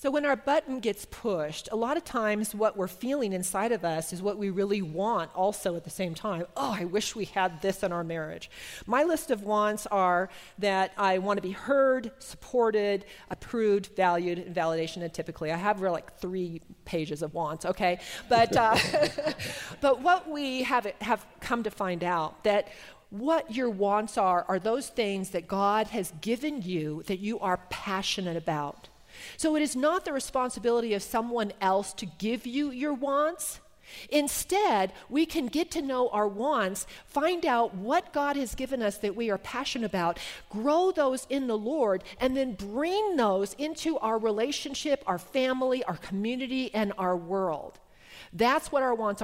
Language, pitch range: English, 190-260 Hz